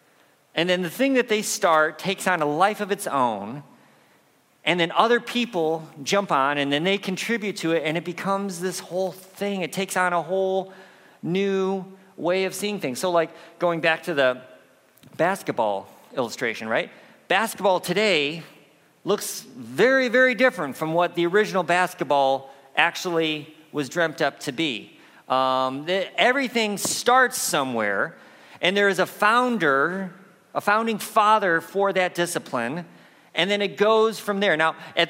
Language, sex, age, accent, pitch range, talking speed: English, male, 50-69, American, 155-195 Hz, 155 wpm